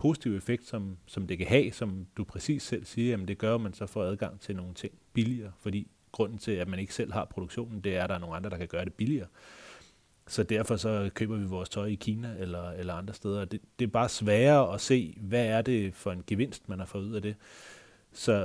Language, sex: Danish, male